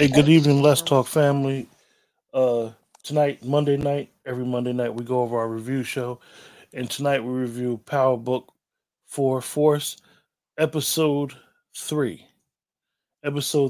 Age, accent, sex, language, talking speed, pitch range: 20-39, American, male, English, 130 wpm, 120-145 Hz